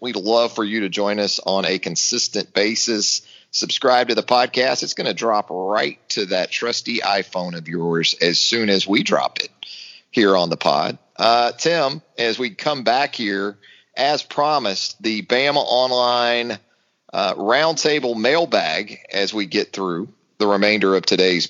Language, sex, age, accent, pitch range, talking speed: English, male, 40-59, American, 105-130 Hz, 165 wpm